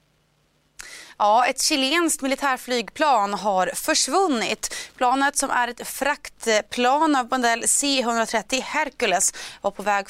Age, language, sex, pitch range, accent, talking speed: 30-49, Swedish, female, 195-255 Hz, native, 105 wpm